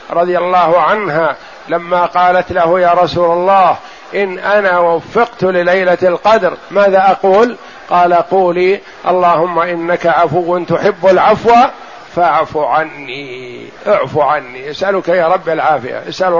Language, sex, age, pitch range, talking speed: Arabic, male, 50-69, 175-210 Hz, 115 wpm